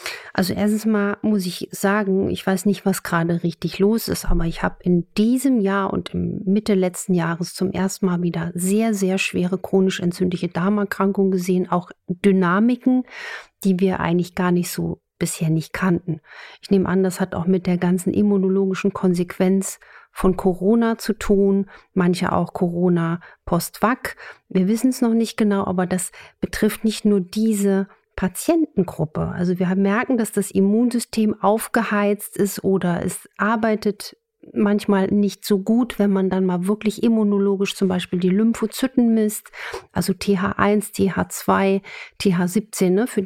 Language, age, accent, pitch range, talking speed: German, 50-69, German, 185-210 Hz, 155 wpm